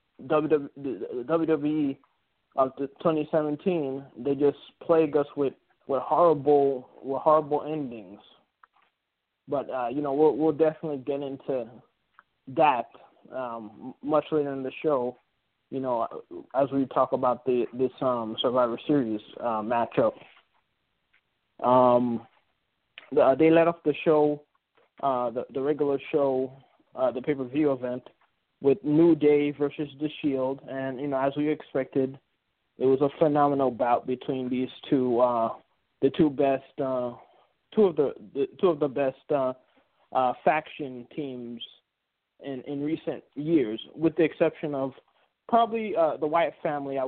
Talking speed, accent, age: 145 wpm, American, 20-39